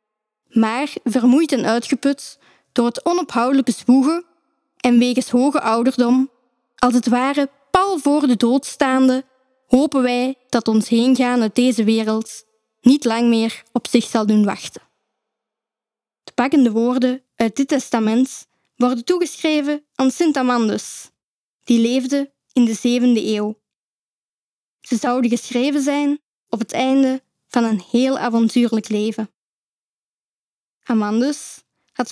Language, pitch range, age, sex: Dutch, 230-275 Hz, 10-29, female